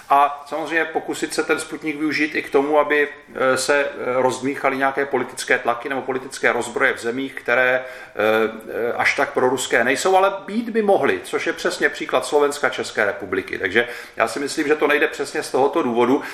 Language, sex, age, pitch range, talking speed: Czech, male, 40-59, 105-135 Hz, 180 wpm